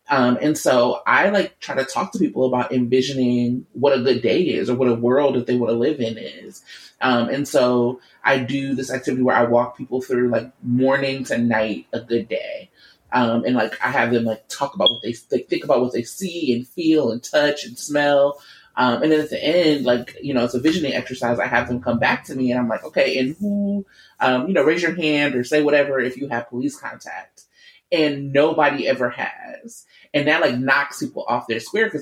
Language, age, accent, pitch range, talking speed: English, 30-49, American, 120-145 Hz, 230 wpm